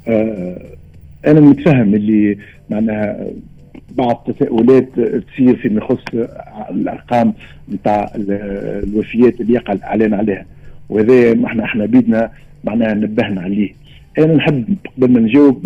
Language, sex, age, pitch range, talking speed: Arabic, male, 50-69, 110-165 Hz, 110 wpm